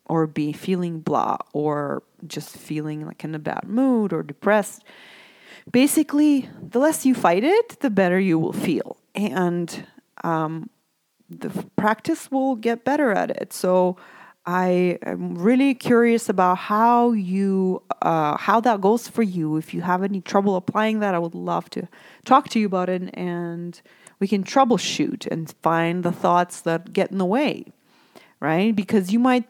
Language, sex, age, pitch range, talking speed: English, female, 30-49, 180-240 Hz, 160 wpm